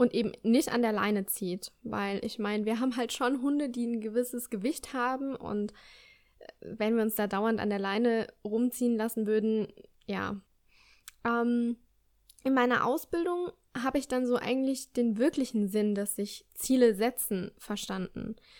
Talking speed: 160 wpm